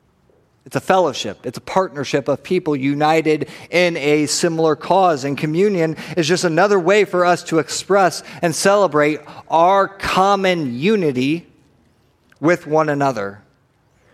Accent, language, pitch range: American, English, 155-190 Hz